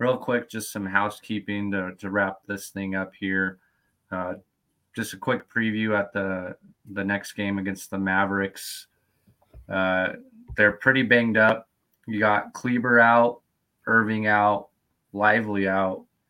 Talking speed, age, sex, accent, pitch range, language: 140 wpm, 20-39, male, American, 100-115 Hz, English